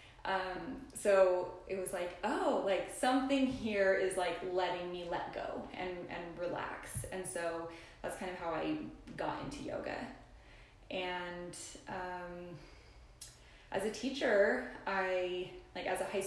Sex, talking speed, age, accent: female, 140 wpm, 20-39, American